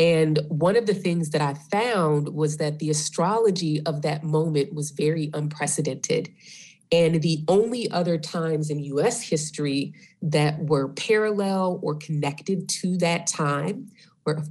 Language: English